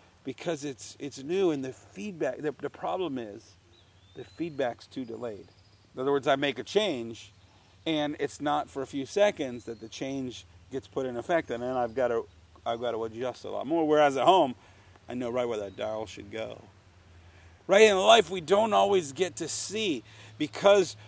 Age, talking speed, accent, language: 40-59, 195 wpm, American, English